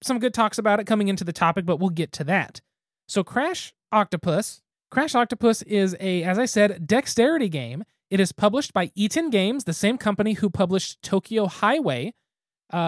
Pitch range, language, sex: 180-230 Hz, English, male